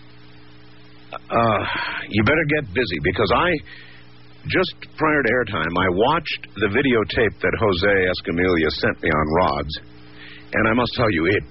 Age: 50-69